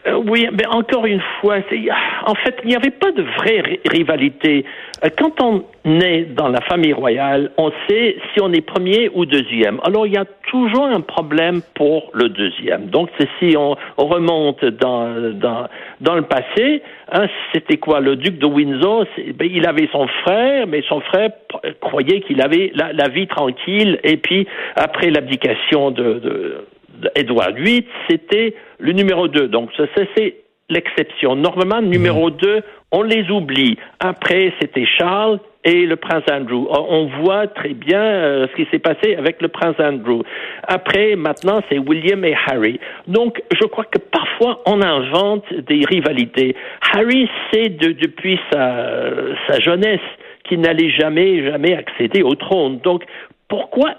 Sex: male